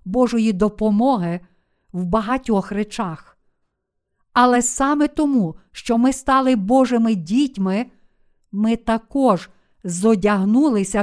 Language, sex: Ukrainian, female